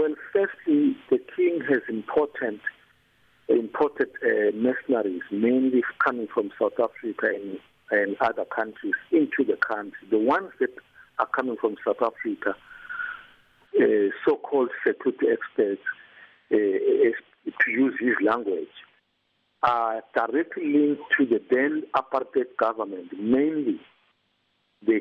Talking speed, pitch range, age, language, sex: 115 wpm, 305-425 Hz, 50-69, English, male